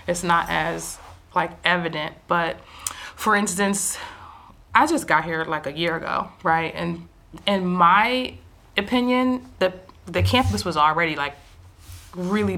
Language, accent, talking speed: English, American, 135 wpm